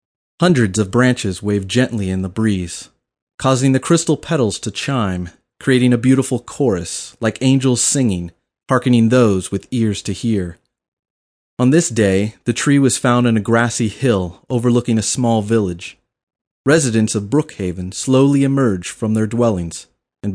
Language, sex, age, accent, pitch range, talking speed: English, male, 30-49, American, 100-135 Hz, 150 wpm